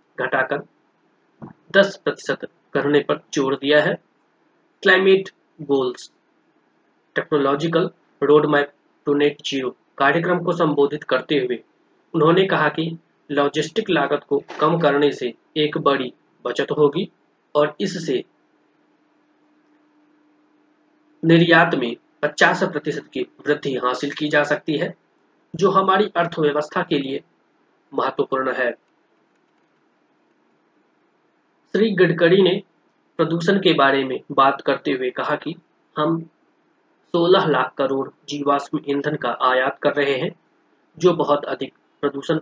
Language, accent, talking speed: Hindi, native, 105 wpm